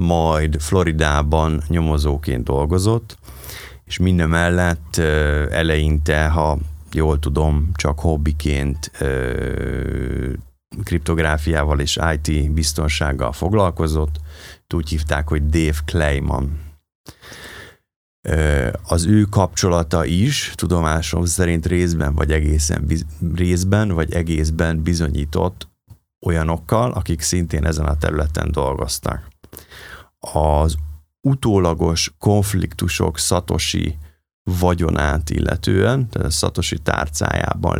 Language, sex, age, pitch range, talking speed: Hungarian, male, 30-49, 75-95 Hz, 80 wpm